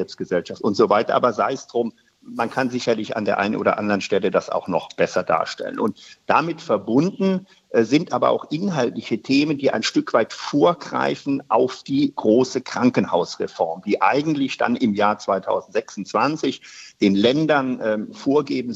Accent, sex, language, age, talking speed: German, male, German, 50-69, 150 wpm